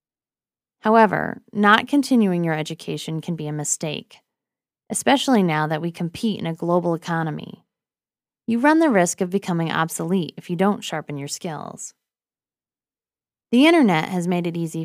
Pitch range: 160-230 Hz